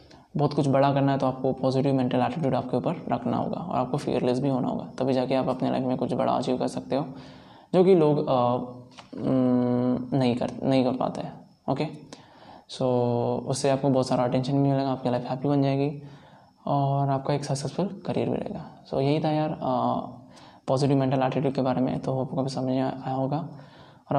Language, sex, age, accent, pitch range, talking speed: Hindi, male, 20-39, native, 130-140 Hz, 195 wpm